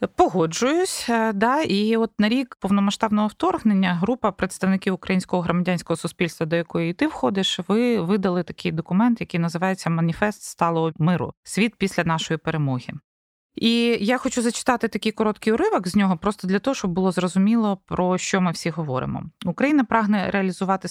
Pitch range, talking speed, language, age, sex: 165-210 Hz, 150 wpm, Ukrainian, 20-39, female